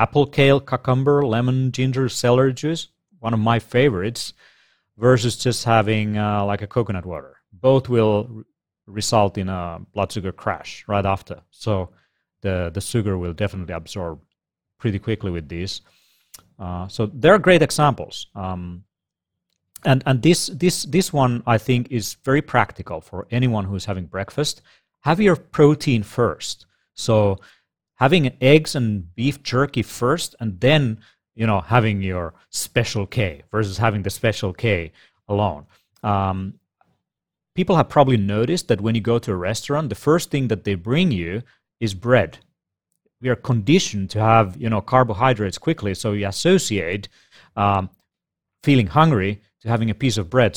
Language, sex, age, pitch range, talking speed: English, male, 30-49, 100-130 Hz, 155 wpm